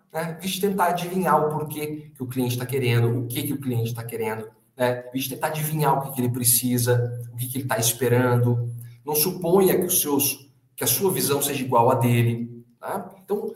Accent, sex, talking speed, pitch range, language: Brazilian, male, 210 wpm, 125-170 Hz, Portuguese